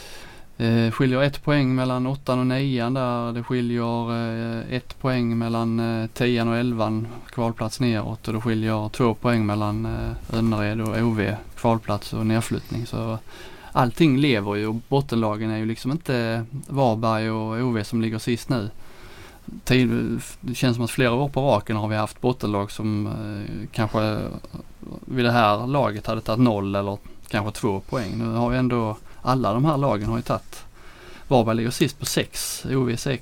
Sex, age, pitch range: male, 20-39, 110-125 Hz